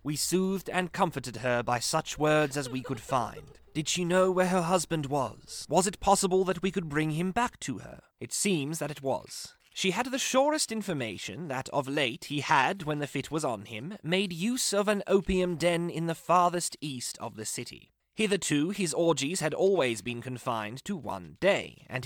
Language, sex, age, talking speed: English, male, 30-49, 205 wpm